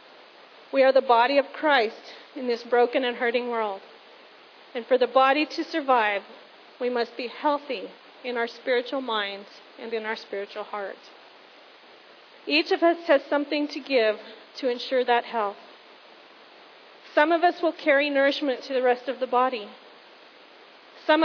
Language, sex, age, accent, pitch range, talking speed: English, female, 40-59, American, 230-270 Hz, 155 wpm